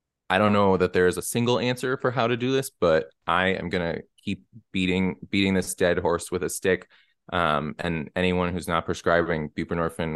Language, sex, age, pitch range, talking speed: English, male, 20-39, 85-95 Hz, 205 wpm